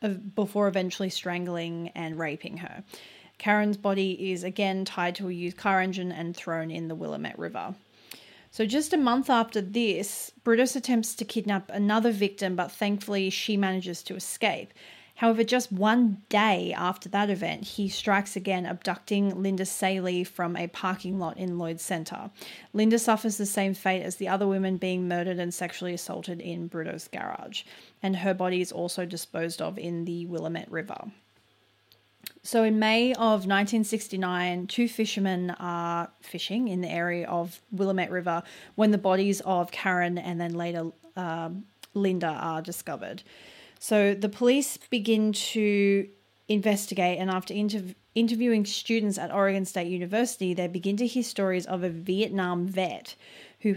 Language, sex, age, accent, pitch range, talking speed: English, female, 30-49, Australian, 175-205 Hz, 155 wpm